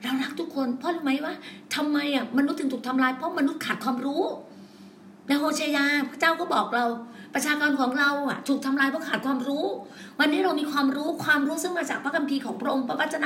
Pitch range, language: 245-300 Hz, Thai